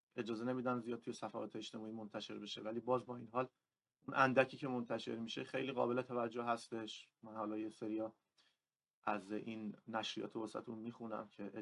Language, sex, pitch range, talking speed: Persian, male, 110-125 Hz, 165 wpm